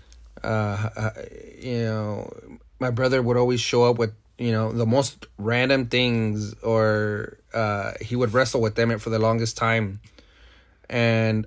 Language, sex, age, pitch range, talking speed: English, male, 30-49, 110-130 Hz, 145 wpm